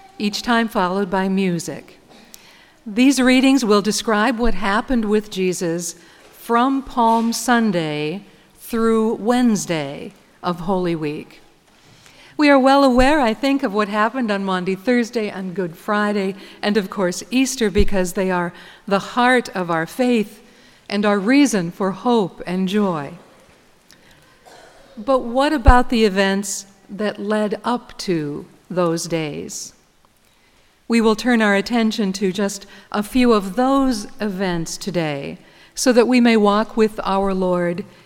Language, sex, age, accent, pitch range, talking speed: English, female, 50-69, American, 185-235 Hz, 135 wpm